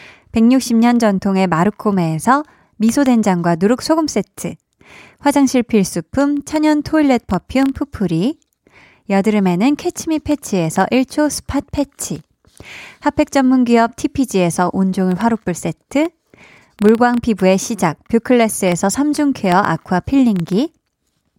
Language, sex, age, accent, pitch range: Korean, female, 20-39, native, 190-280 Hz